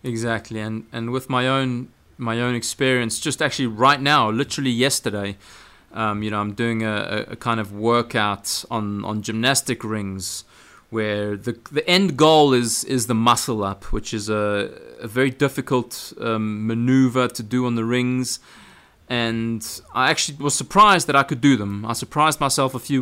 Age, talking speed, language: 30-49, 175 wpm, English